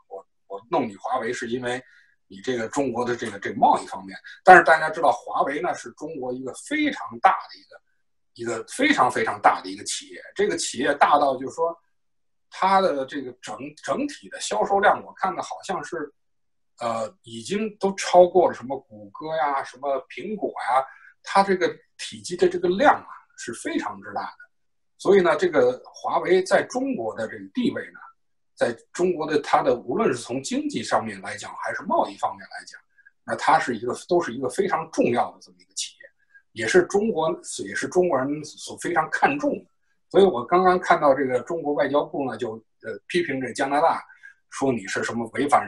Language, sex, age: Chinese, male, 60-79